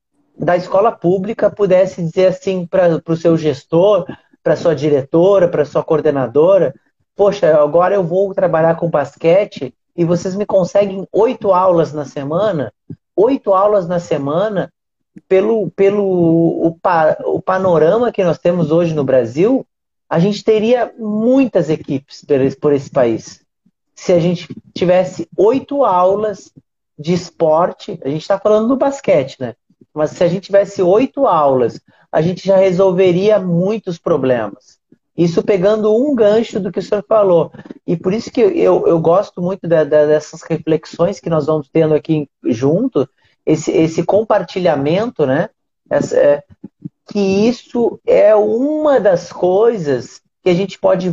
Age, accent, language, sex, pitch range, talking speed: 30-49, Brazilian, Portuguese, male, 165-205 Hz, 150 wpm